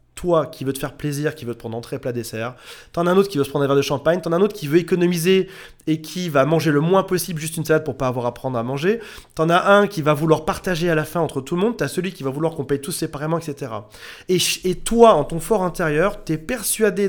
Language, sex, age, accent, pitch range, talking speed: French, male, 30-49, French, 140-180 Hz, 295 wpm